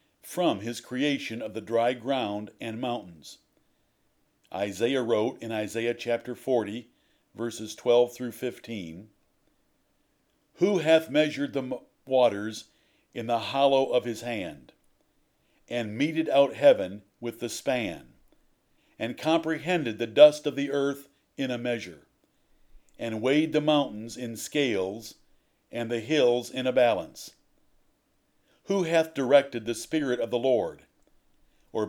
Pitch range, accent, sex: 115-150 Hz, American, male